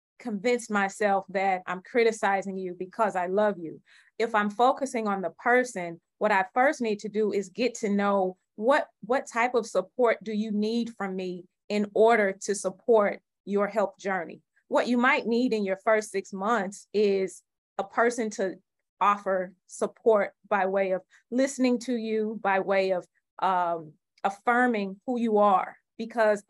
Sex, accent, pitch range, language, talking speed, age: female, American, 195-225 Hz, English, 165 wpm, 30-49